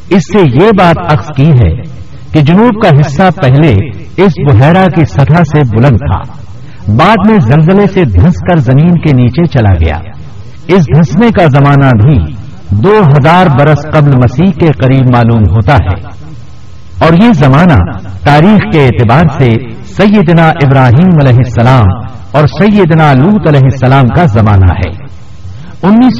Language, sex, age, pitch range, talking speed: Urdu, male, 60-79, 115-175 Hz, 150 wpm